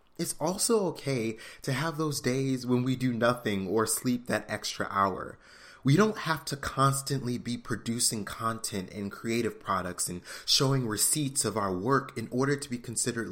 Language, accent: English, American